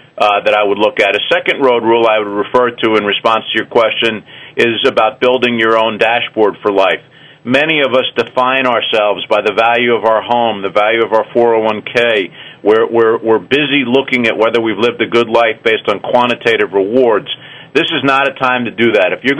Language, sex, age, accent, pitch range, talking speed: English, male, 50-69, American, 115-130 Hz, 210 wpm